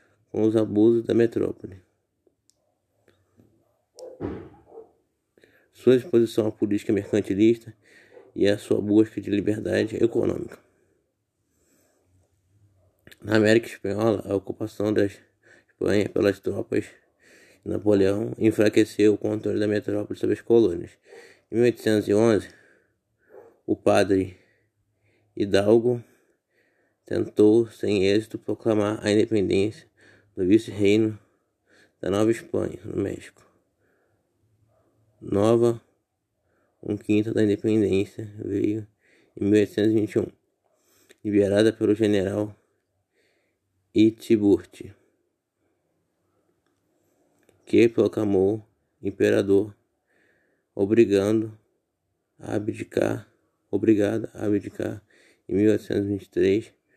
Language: Portuguese